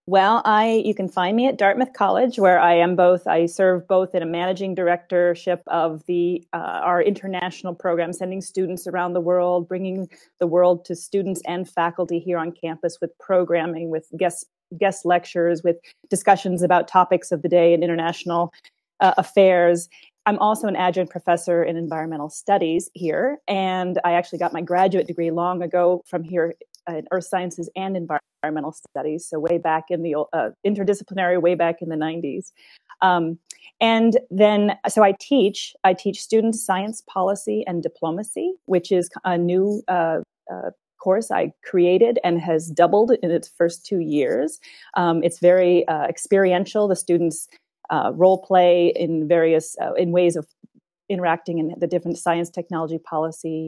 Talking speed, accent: 165 wpm, American